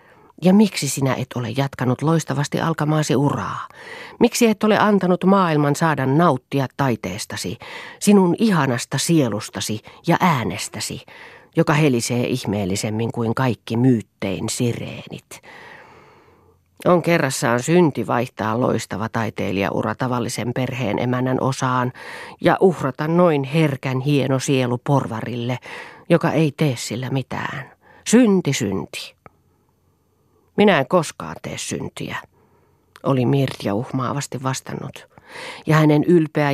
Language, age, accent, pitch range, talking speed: Finnish, 40-59, native, 120-160 Hz, 105 wpm